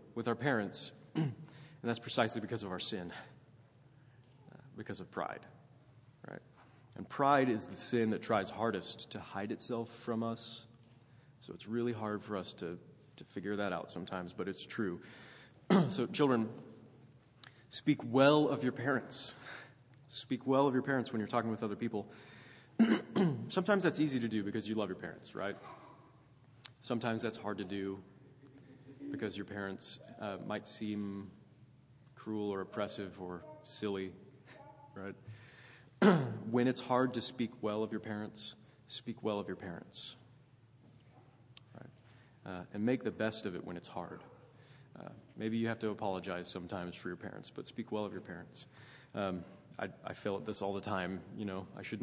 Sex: male